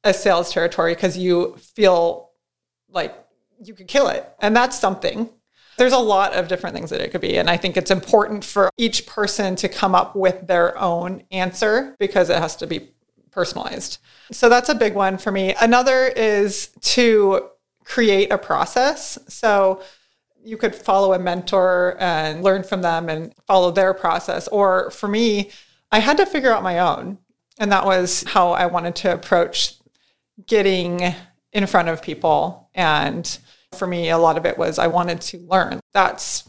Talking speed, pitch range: 180 wpm, 180-220 Hz